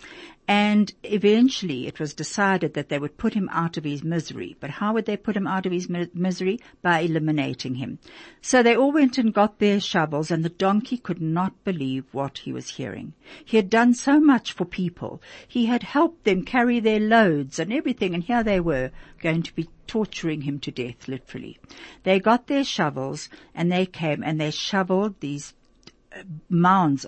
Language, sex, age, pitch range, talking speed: German, female, 60-79, 150-220 Hz, 190 wpm